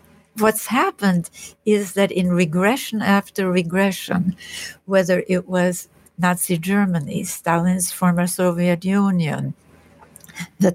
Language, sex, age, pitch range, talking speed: English, female, 60-79, 170-205 Hz, 100 wpm